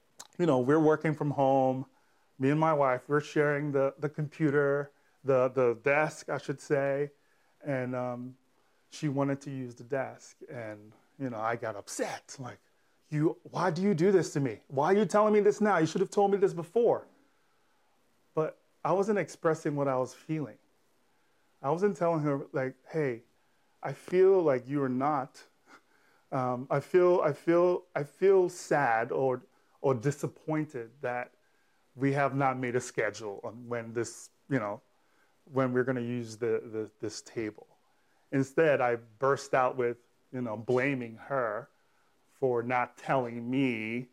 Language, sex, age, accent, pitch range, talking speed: English, male, 30-49, American, 125-155 Hz, 165 wpm